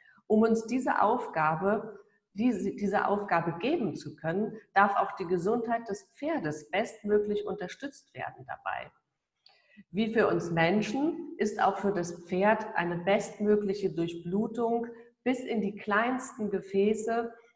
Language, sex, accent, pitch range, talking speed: German, female, German, 185-215 Hz, 125 wpm